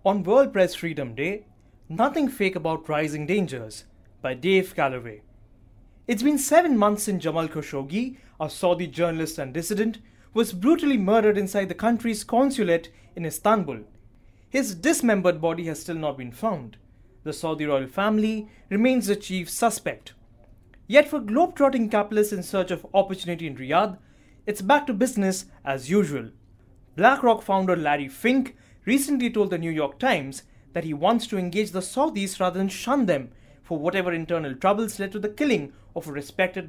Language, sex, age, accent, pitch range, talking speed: English, male, 20-39, Indian, 150-220 Hz, 160 wpm